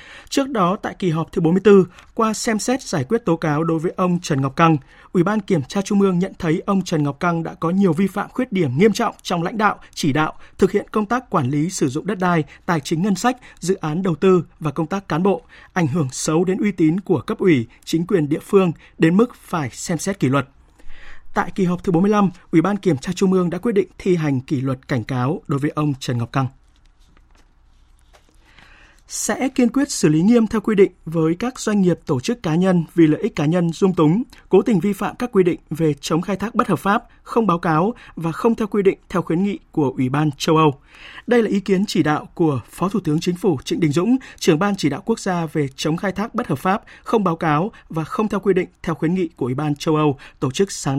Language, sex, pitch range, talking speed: Vietnamese, male, 155-200 Hz, 255 wpm